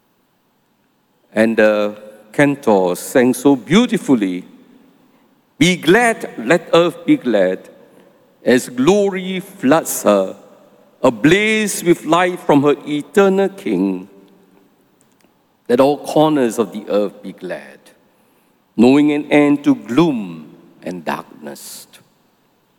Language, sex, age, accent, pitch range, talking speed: English, male, 50-69, Malaysian, 140-215 Hz, 100 wpm